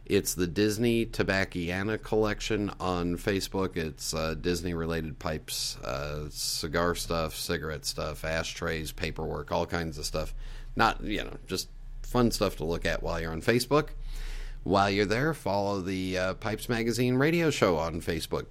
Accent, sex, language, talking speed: American, male, English, 150 wpm